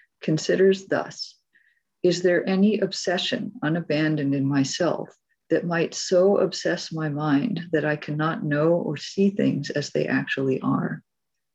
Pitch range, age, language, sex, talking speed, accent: 145-195 Hz, 40-59, English, female, 135 wpm, American